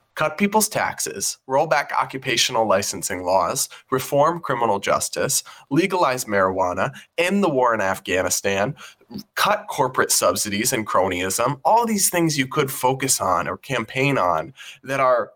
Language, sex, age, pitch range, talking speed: English, male, 20-39, 115-170 Hz, 135 wpm